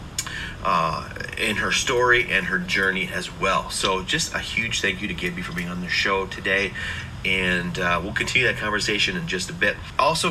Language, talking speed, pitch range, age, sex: English, 200 wpm, 100-130 Hz, 30-49, male